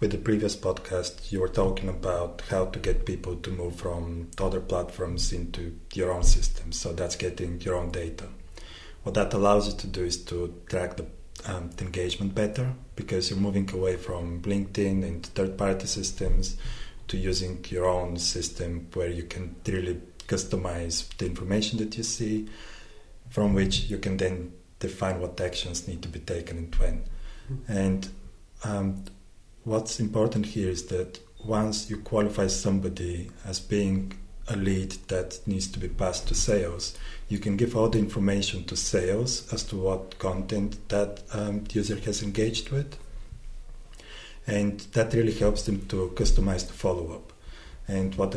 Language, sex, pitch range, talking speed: English, male, 90-105 Hz, 165 wpm